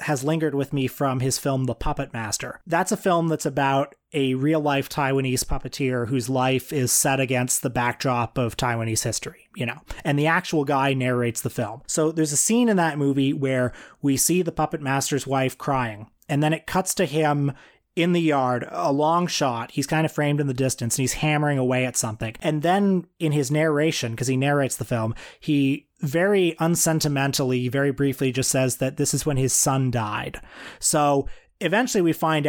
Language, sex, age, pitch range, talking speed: English, male, 30-49, 130-160 Hz, 195 wpm